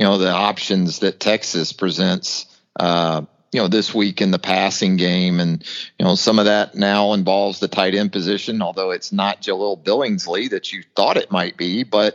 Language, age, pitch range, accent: English, 40-59, 95-115 Hz, American